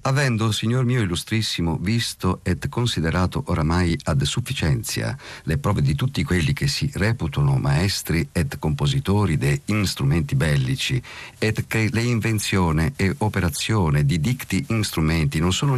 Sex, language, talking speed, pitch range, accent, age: male, Italian, 135 wpm, 90-130 Hz, native, 50-69